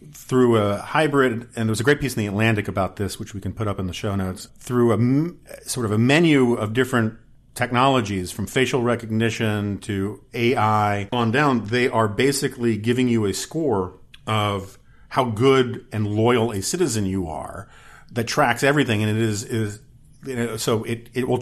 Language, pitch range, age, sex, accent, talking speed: English, 110-130 Hz, 40-59, male, American, 190 wpm